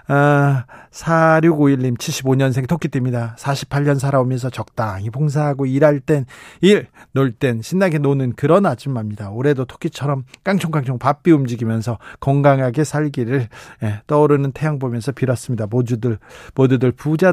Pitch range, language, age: 135-185 Hz, Korean, 40-59